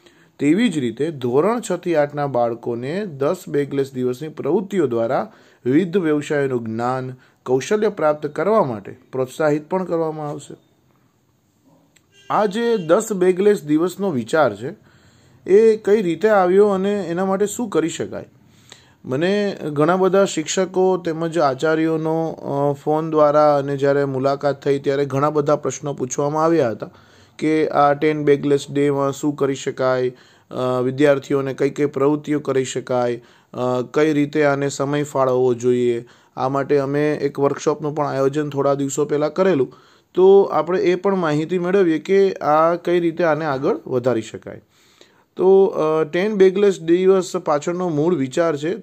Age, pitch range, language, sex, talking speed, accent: 30-49, 140-180 Hz, Gujarati, male, 90 wpm, native